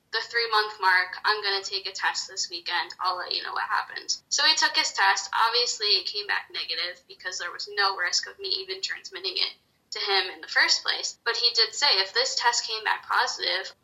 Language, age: English, 10-29